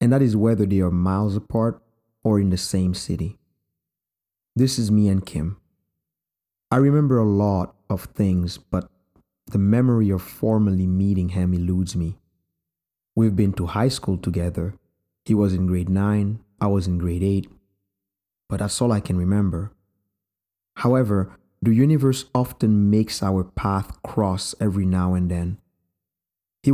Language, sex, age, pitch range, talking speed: English, male, 30-49, 90-105 Hz, 155 wpm